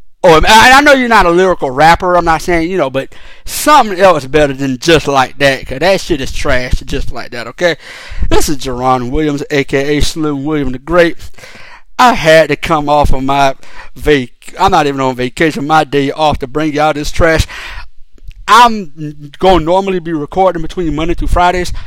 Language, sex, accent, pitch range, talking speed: English, male, American, 140-175 Hz, 190 wpm